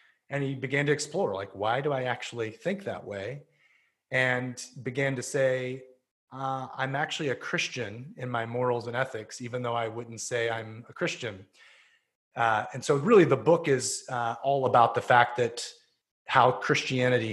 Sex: male